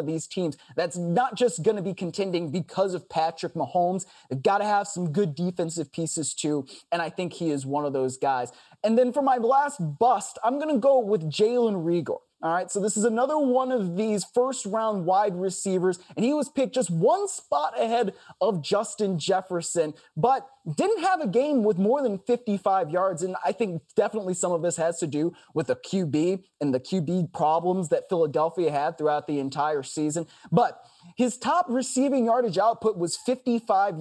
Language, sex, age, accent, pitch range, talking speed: English, male, 20-39, American, 160-225 Hz, 195 wpm